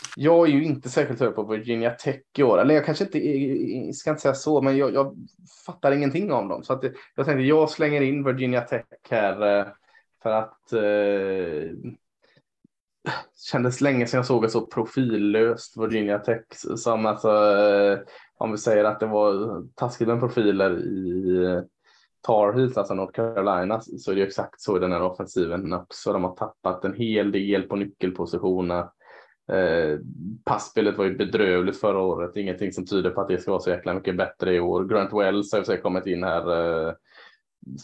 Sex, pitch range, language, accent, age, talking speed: male, 95-125 Hz, Swedish, Norwegian, 20-39, 180 wpm